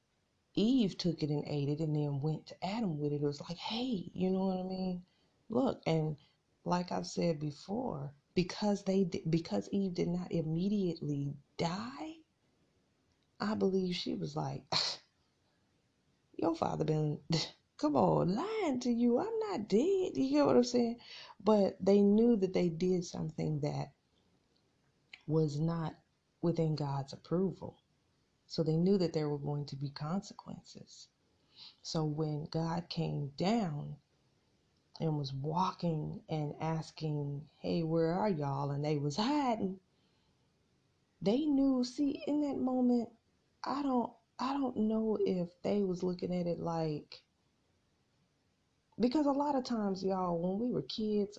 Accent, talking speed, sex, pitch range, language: American, 145 wpm, female, 155-215 Hz, English